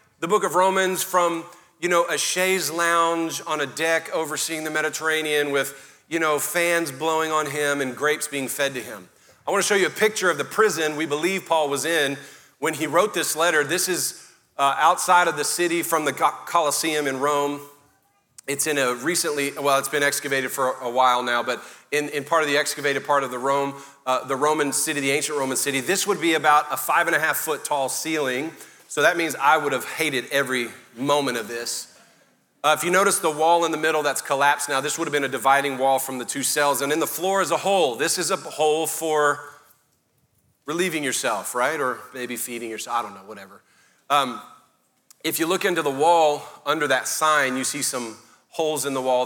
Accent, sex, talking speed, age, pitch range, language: American, male, 215 wpm, 40-59, 135-160 Hz, English